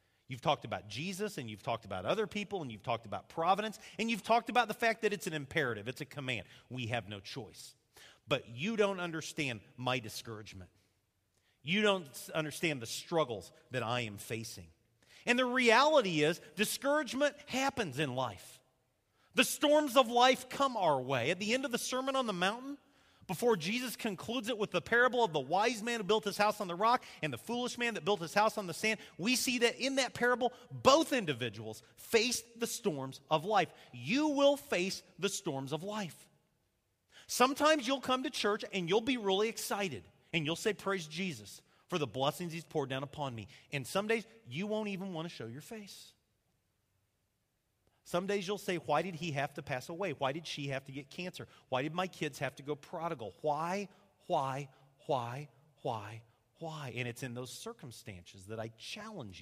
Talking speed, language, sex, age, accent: 195 wpm, English, male, 40-59, American